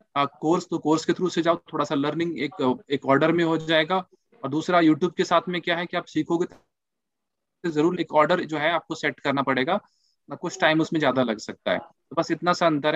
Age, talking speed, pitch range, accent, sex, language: 20-39, 230 wpm, 145-185 Hz, native, male, Hindi